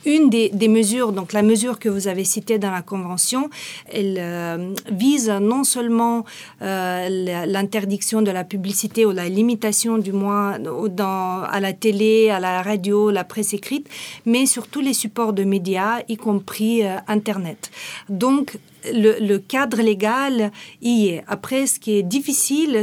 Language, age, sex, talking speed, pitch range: French, 40-59, female, 165 wpm, 195-230 Hz